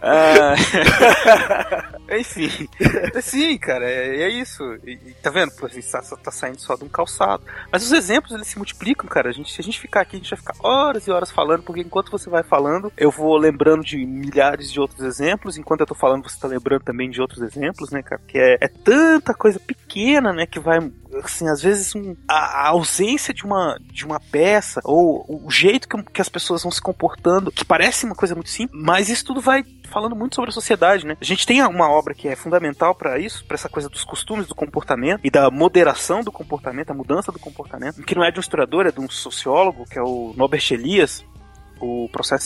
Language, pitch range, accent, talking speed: Portuguese, 145-205 Hz, Brazilian, 230 wpm